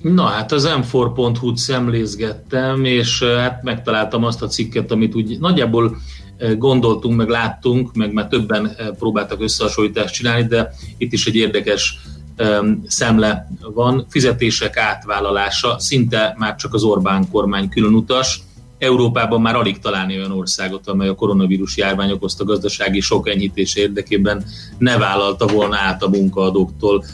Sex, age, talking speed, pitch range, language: male, 30-49, 130 wpm, 95-115 Hz, Hungarian